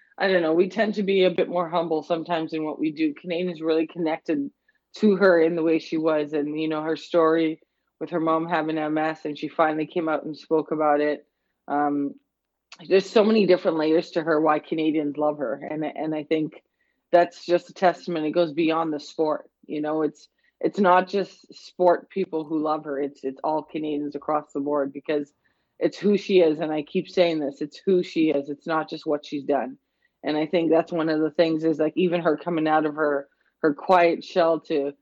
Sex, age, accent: female, 20-39, American